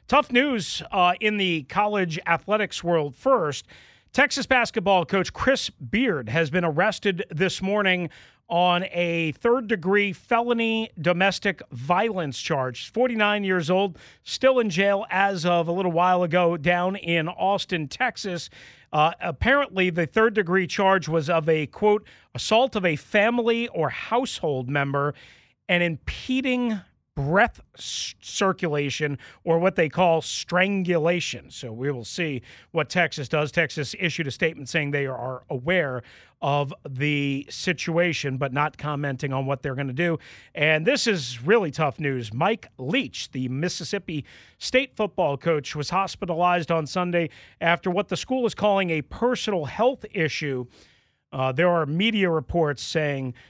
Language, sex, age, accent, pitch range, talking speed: English, male, 40-59, American, 140-190 Hz, 145 wpm